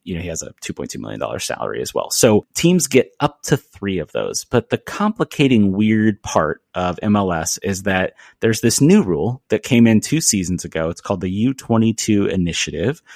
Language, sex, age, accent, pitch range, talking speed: English, male, 30-49, American, 95-130 Hz, 190 wpm